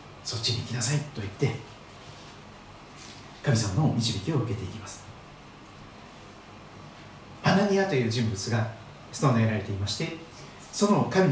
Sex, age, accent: male, 40-59, native